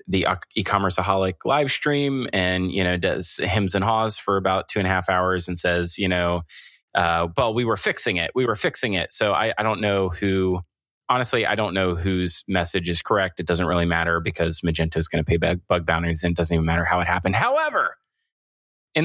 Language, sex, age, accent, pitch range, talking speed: English, male, 20-39, American, 90-105 Hz, 215 wpm